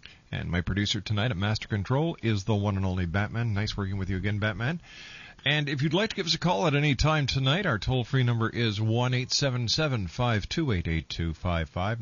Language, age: English, 50-69